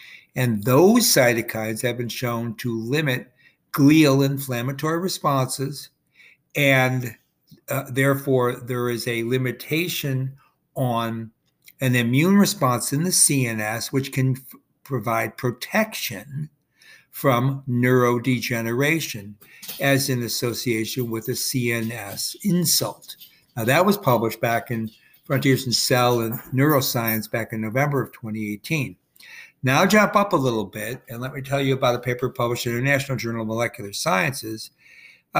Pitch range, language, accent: 115-140 Hz, English, American